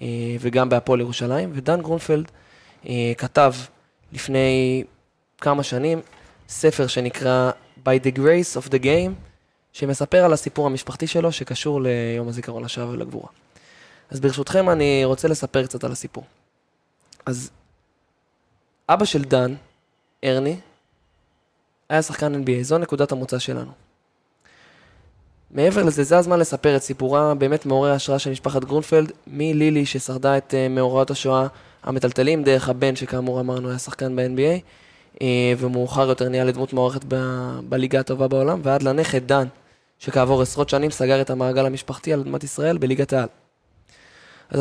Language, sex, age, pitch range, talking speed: Hebrew, male, 20-39, 125-145 Hz, 130 wpm